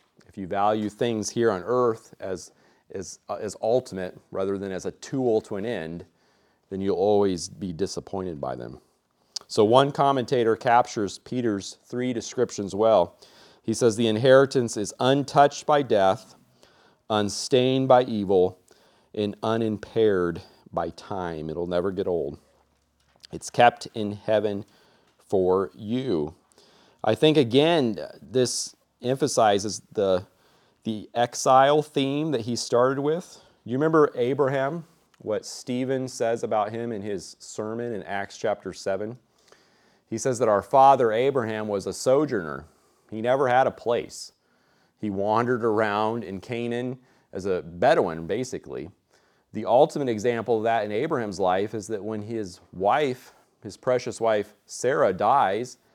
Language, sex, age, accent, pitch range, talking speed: English, male, 40-59, American, 100-125 Hz, 135 wpm